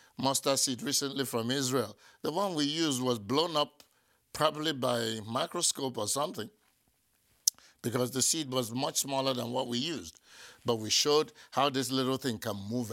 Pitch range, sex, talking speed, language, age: 110-145 Hz, male, 170 wpm, English, 60-79